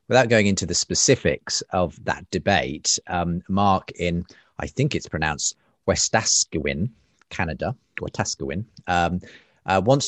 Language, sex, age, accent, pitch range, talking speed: English, male, 30-49, British, 85-115 Hz, 115 wpm